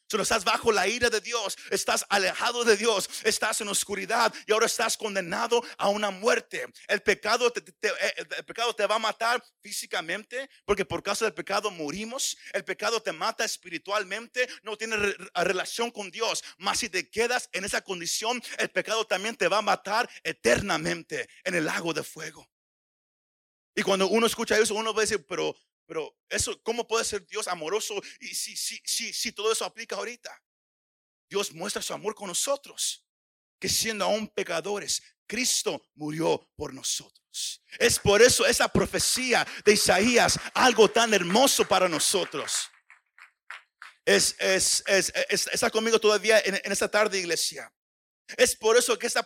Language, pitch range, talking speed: Spanish, 200-235 Hz, 165 wpm